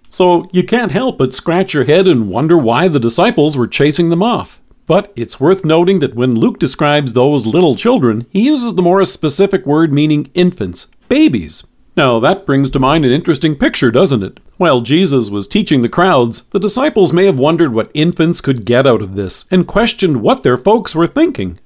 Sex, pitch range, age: male, 130-185 Hz, 40-59